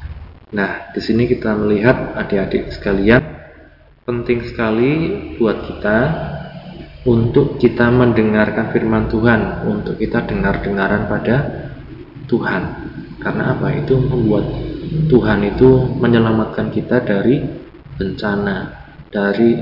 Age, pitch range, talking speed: 20-39, 105-125 Hz, 100 wpm